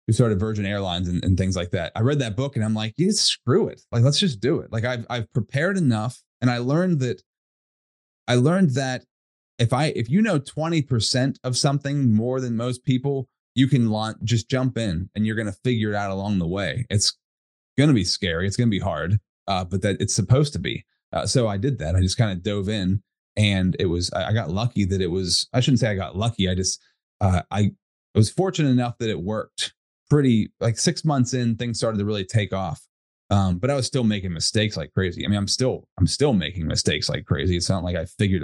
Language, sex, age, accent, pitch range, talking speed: English, male, 30-49, American, 100-130 Hz, 240 wpm